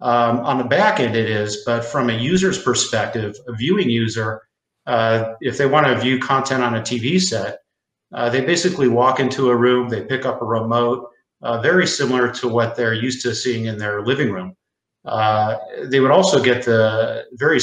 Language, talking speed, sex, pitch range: English, 195 wpm, male, 110-125 Hz